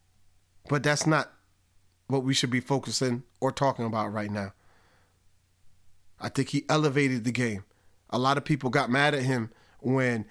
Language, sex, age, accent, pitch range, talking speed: English, male, 30-49, American, 95-145 Hz, 165 wpm